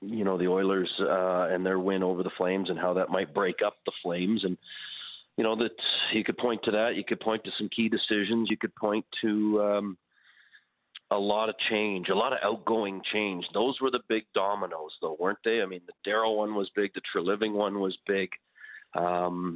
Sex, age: male, 40-59